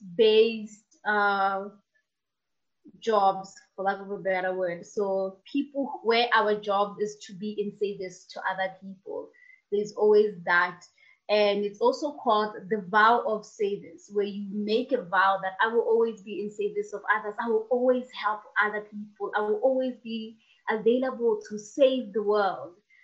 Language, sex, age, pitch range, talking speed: English, female, 20-39, 205-245 Hz, 160 wpm